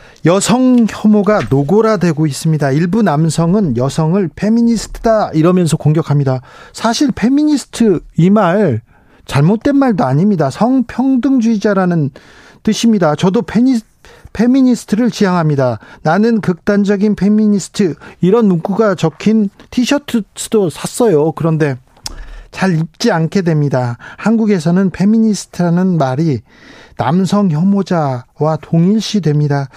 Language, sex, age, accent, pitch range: Korean, male, 40-59, native, 150-215 Hz